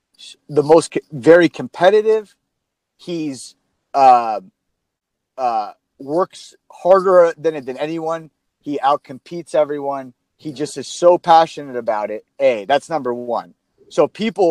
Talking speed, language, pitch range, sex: 120 wpm, English, 130-170 Hz, male